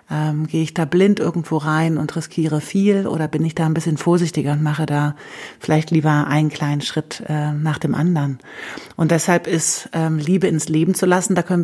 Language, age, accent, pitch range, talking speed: German, 30-49, German, 150-165 Hz, 205 wpm